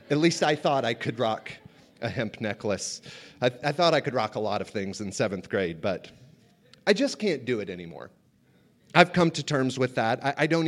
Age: 30-49